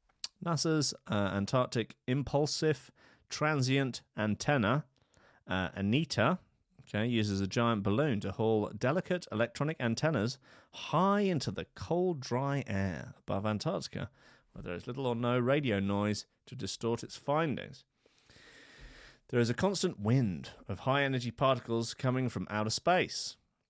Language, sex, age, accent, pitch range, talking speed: English, male, 30-49, British, 110-145 Hz, 125 wpm